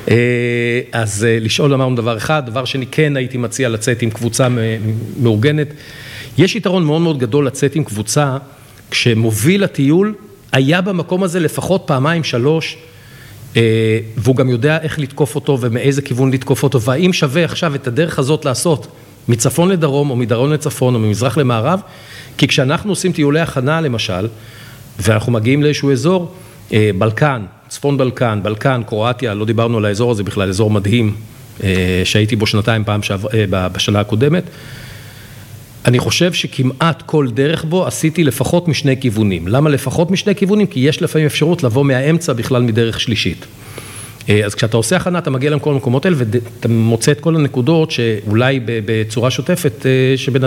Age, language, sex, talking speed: 50-69, Hebrew, male, 150 wpm